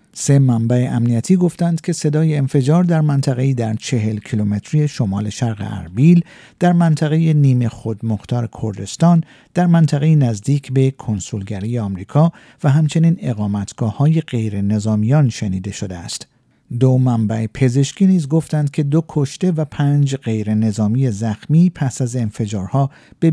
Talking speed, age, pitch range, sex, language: 125 wpm, 50-69, 115-155 Hz, male, Persian